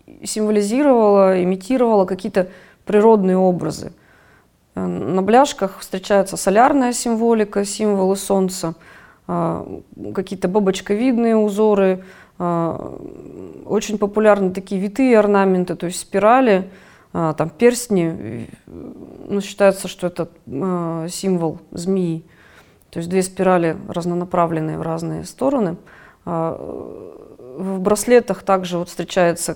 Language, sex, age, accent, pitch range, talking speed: Russian, female, 30-49, native, 175-215 Hz, 85 wpm